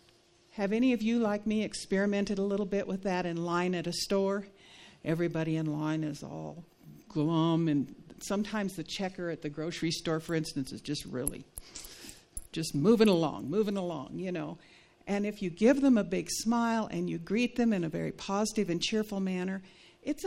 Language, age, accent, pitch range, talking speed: English, 60-79, American, 175-220 Hz, 185 wpm